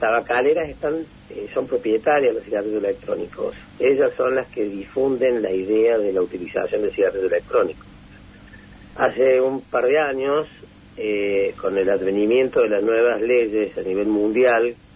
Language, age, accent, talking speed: Spanish, 50-69, Argentinian, 150 wpm